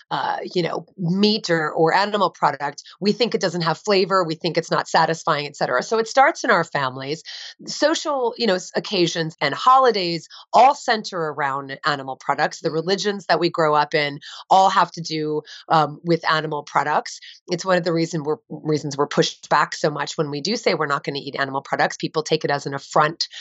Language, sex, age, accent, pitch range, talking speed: English, female, 30-49, American, 155-205 Hz, 205 wpm